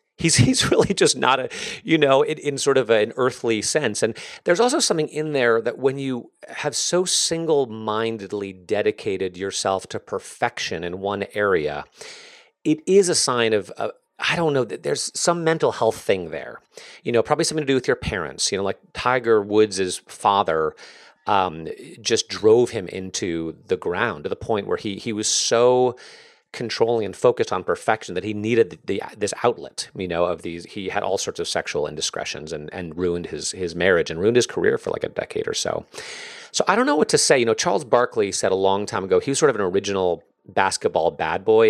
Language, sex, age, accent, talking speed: English, male, 40-59, American, 205 wpm